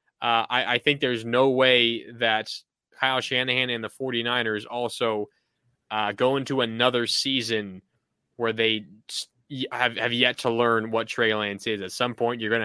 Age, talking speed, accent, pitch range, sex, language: 20-39, 165 wpm, American, 115-140 Hz, male, English